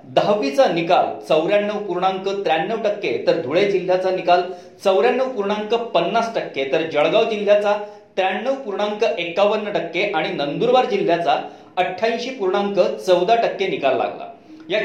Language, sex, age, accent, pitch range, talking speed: Marathi, male, 40-59, native, 175-230 Hz, 105 wpm